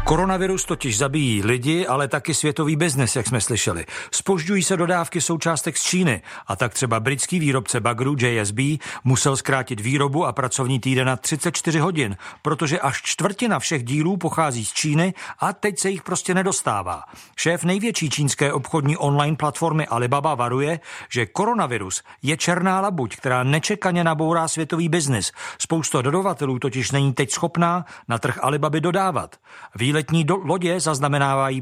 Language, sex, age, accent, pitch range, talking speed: Czech, male, 50-69, native, 135-170 Hz, 150 wpm